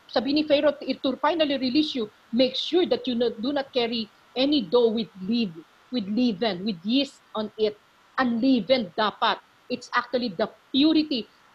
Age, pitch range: 40-59, 245-300 Hz